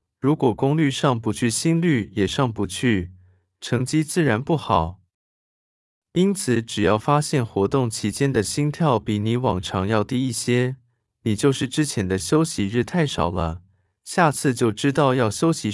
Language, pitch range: Chinese, 100-145 Hz